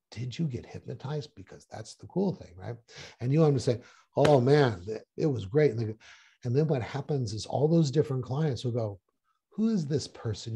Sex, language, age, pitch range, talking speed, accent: male, English, 60-79, 115-155 Hz, 210 wpm, American